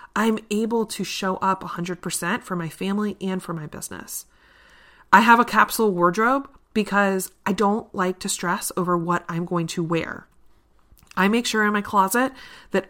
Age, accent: 30-49, American